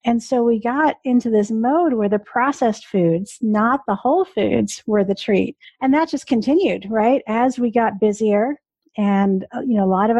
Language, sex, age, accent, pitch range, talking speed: English, female, 50-69, American, 200-260 Hz, 195 wpm